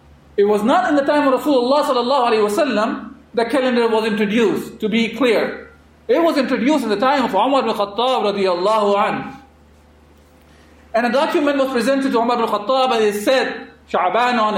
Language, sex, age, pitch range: English, male, 40-59, 190-265 Hz